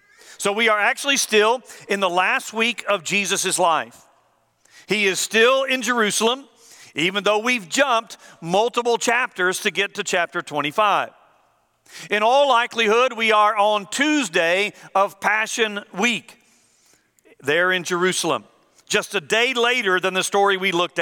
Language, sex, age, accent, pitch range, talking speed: English, male, 50-69, American, 180-235 Hz, 145 wpm